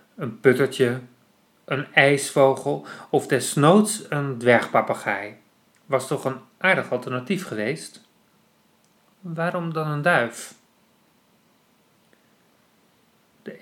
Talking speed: 85 wpm